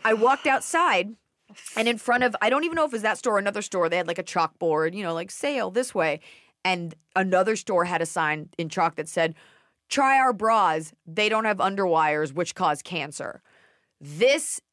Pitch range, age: 160-215 Hz, 30-49